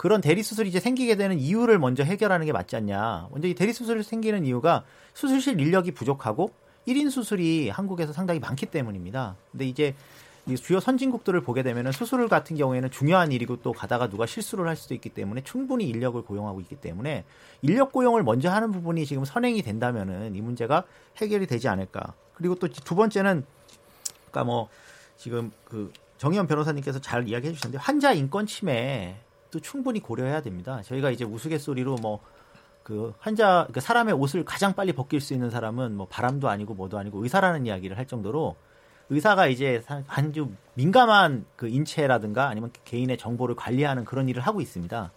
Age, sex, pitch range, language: 40-59, male, 120-190 Hz, Korean